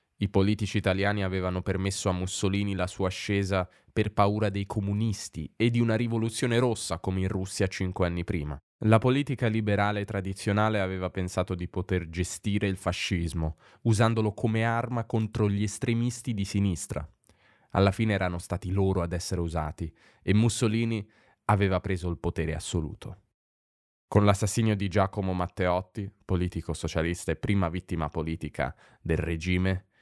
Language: Italian